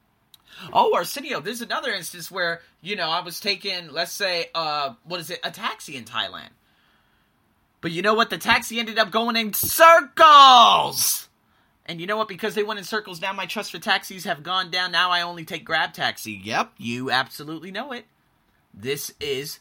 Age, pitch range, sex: 30-49, 135-210 Hz, male